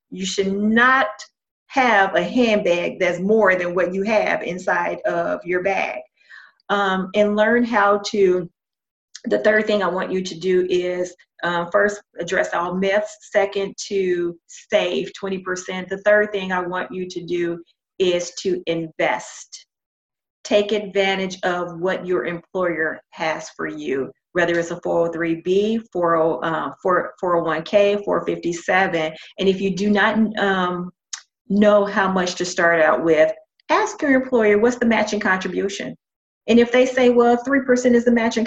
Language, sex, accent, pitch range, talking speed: English, female, American, 180-230 Hz, 145 wpm